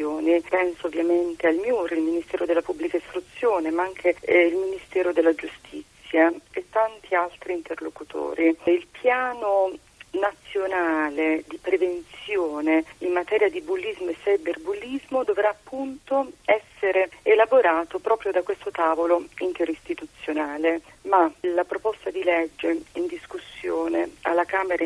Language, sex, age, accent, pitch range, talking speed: Italian, female, 40-59, native, 170-235 Hz, 115 wpm